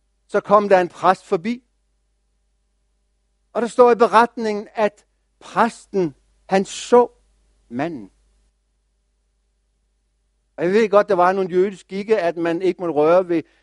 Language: English